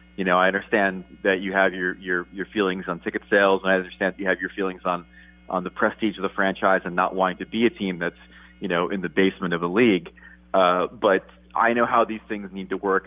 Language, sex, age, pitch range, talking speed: English, male, 30-49, 85-100 Hz, 255 wpm